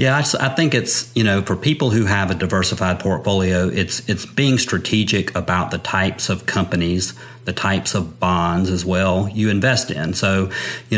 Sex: male